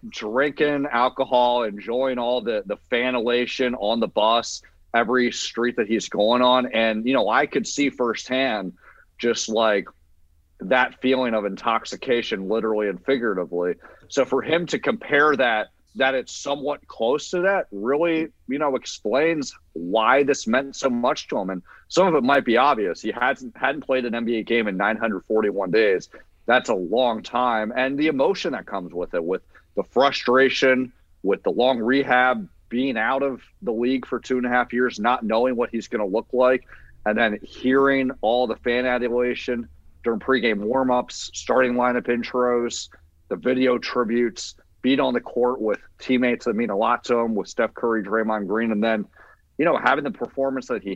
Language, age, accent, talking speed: English, 40-59, American, 180 wpm